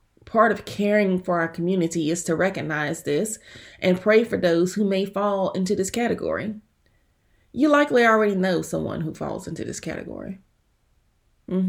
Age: 30-49